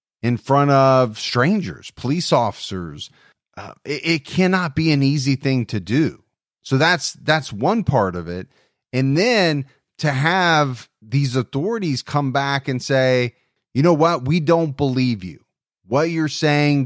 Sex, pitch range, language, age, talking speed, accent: male, 125-155 Hz, English, 30-49, 155 wpm, American